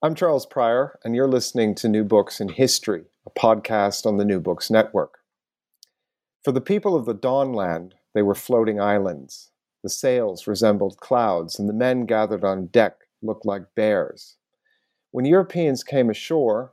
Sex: male